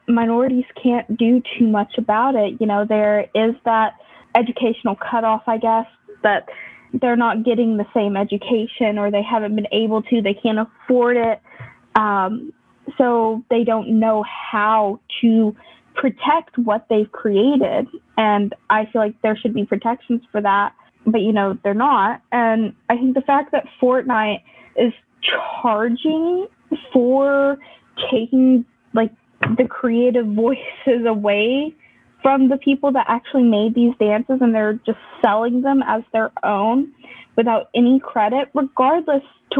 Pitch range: 220-255 Hz